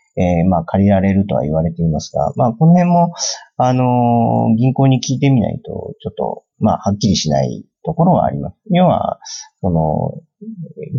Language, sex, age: Japanese, male, 40-59